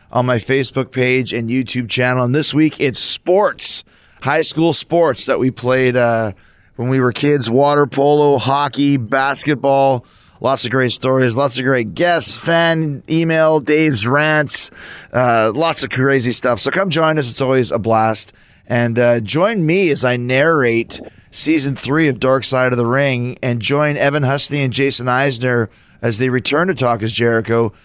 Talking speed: 170 wpm